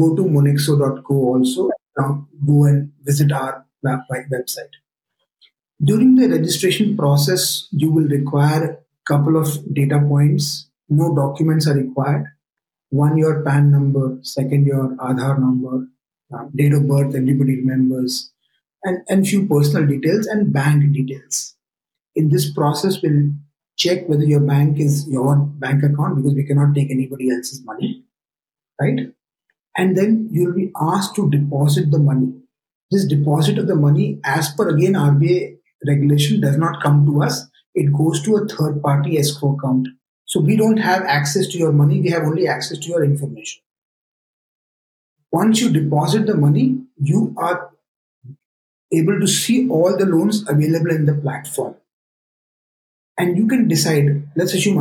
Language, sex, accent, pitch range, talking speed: English, male, Indian, 140-175 Hz, 150 wpm